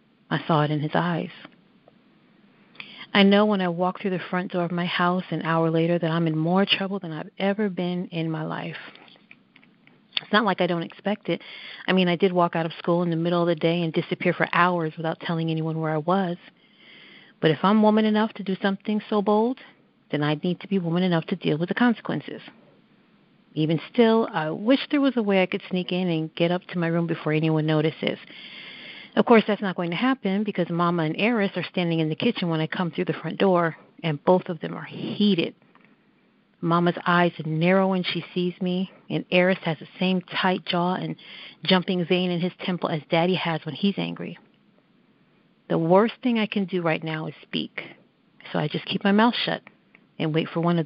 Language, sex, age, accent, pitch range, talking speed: English, female, 50-69, American, 165-200 Hz, 215 wpm